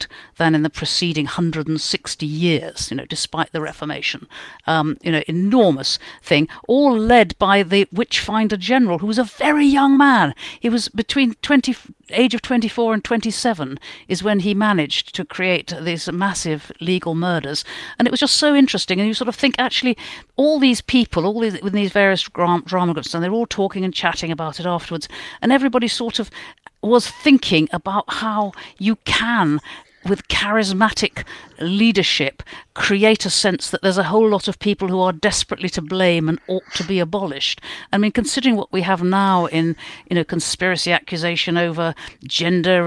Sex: female